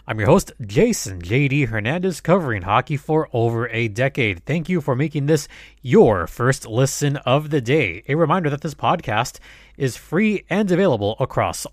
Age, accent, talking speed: 20-39, American, 170 wpm